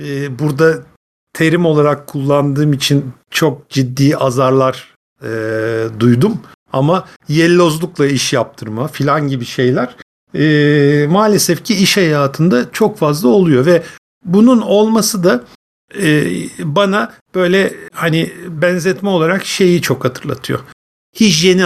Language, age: Turkish, 50-69